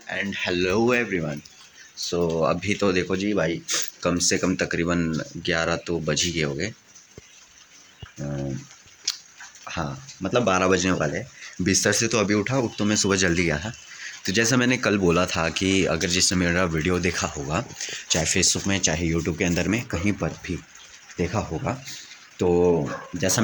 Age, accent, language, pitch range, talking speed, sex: 20-39, native, Hindi, 85-100 Hz, 170 wpm, male